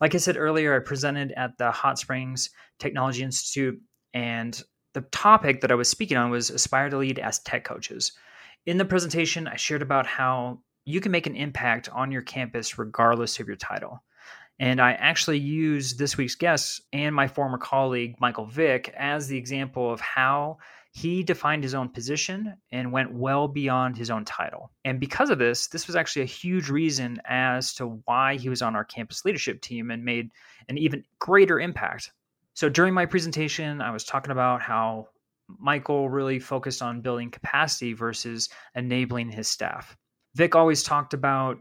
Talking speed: 180 wpm